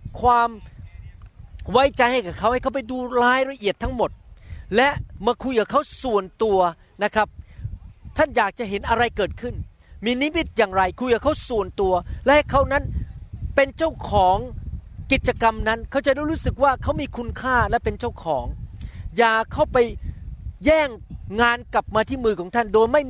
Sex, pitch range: male, 200-255 Hz